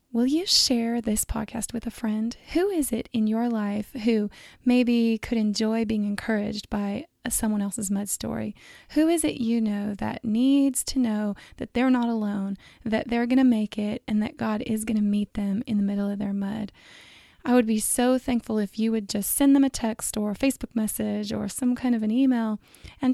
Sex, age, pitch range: female, 20-39, 215-250 Hz